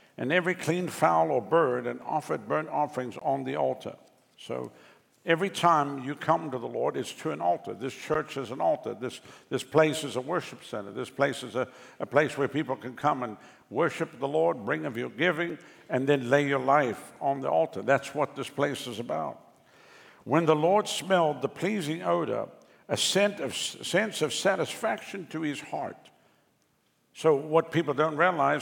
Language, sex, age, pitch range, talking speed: English, male, 60-79, 135-165 Hz, 190 wpm